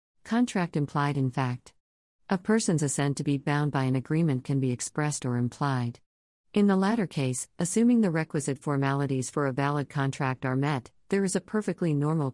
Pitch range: 130-160 Hz